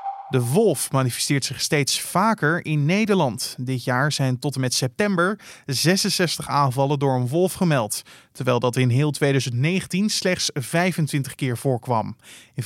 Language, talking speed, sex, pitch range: Dutch, 145 wpm, male, 130-165 Hz